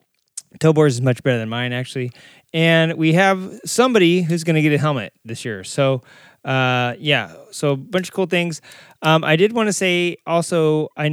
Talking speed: 195 wpm